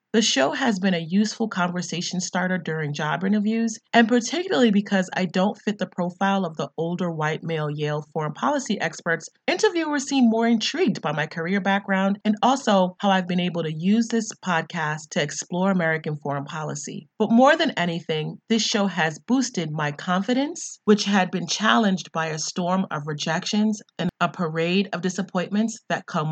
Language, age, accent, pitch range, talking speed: English, 30-49, American, 160-205 Hz, 175 wpm